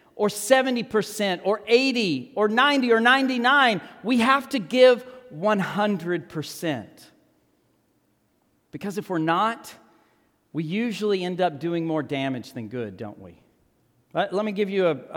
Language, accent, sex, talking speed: English, American, male, 125 wpm